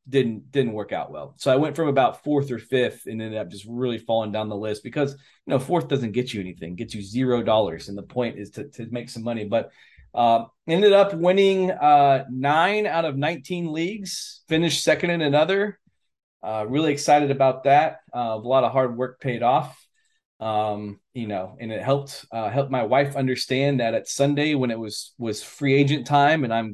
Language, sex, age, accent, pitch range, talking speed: English, male, 20-39, American, 115-165 Hz, 210 wpm